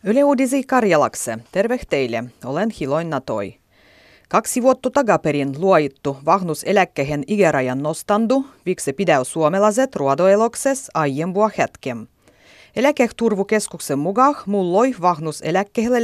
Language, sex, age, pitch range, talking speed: Finnish, female, 30-49, 150-220 Hz, 90 wpm